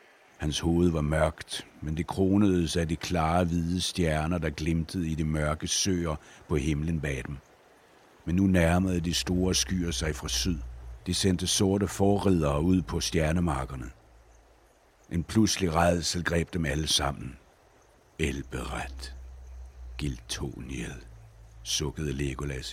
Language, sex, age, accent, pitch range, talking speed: Danish, male, 60-79, native, 75-95 Hz, 130 wpm